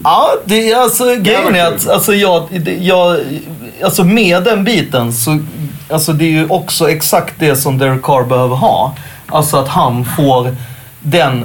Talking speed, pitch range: 175 wpm, 125-155 Hz